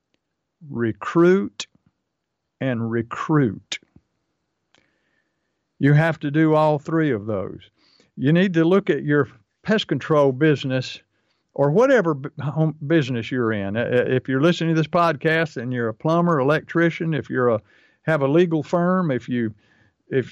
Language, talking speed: English, 140 wpm